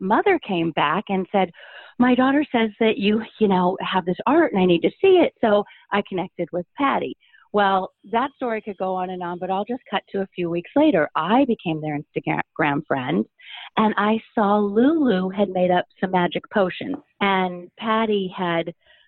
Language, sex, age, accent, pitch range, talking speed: English, female, 40-59, American, 175-220 Hz, 190 wpm